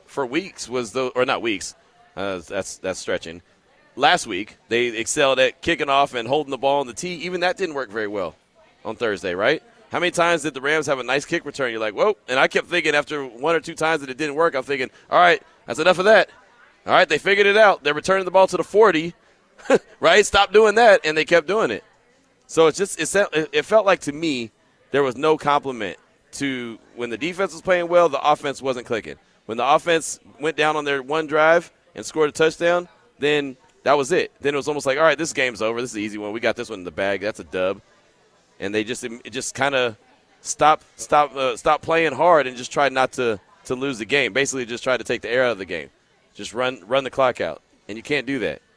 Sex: male